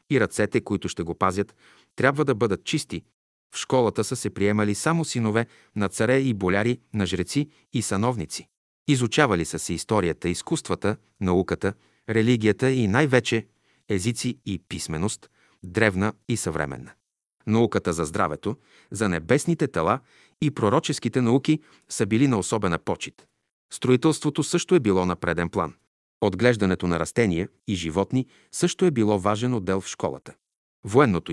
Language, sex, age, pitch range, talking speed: Bulgarian, male, 40-59, 90-125 Hz, 145 wpm